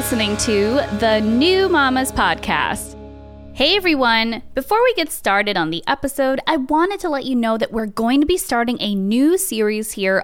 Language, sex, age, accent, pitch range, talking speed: English, female, 20-39, American, 205-280 Hz, 180 wpm